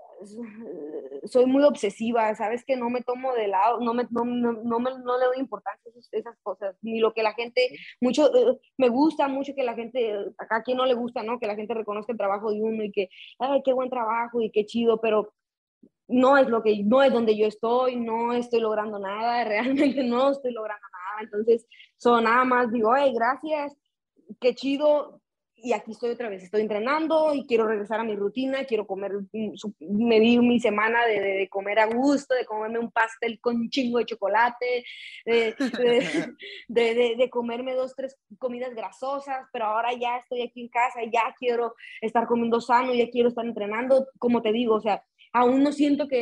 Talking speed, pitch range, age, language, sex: 205 wpm, 220-260 Hz, 20-39, Spanish, female